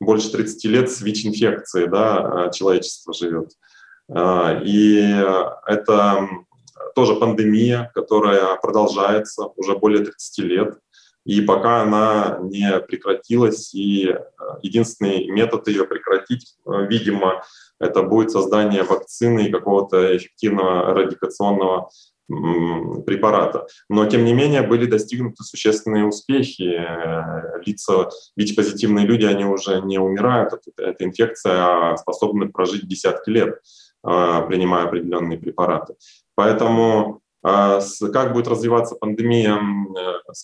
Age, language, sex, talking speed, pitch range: 20-39, Russian, male, 105 wpm, 95-110 Hz